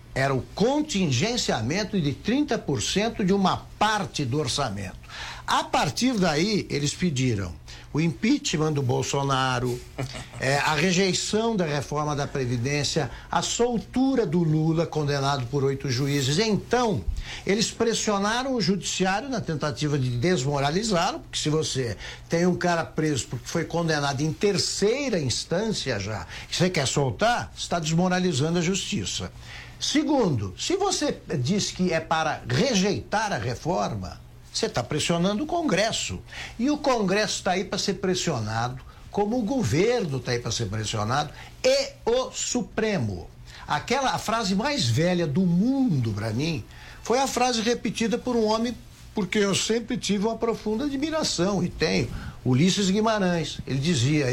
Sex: male